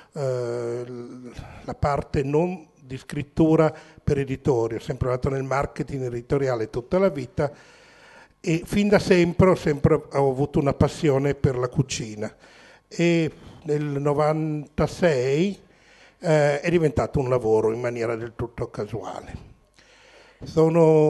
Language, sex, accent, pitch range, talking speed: Italian, male, native, 125-155 Hz, 120 wpm